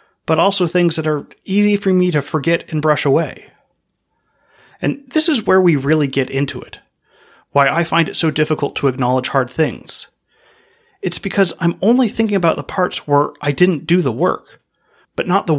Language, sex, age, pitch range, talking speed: English, male, 30-49, 140-185 Hz, 190 wpm